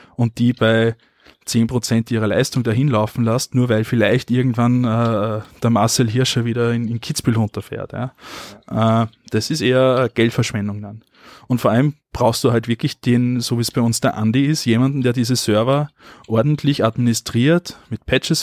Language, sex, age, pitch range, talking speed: German, male, 20-39, 115-140 Hz, 175 wpm